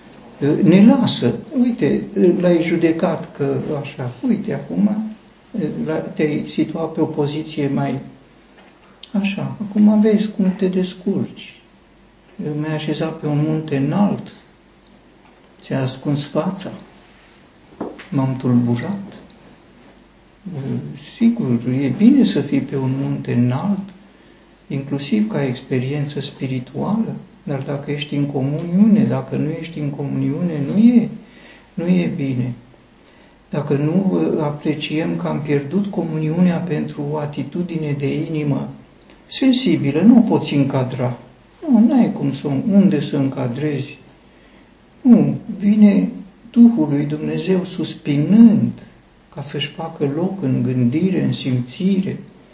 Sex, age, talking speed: male, 60-79, 115 wpm